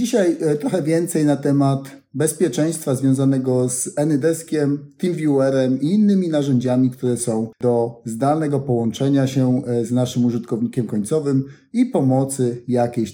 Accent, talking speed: native, 120 wpm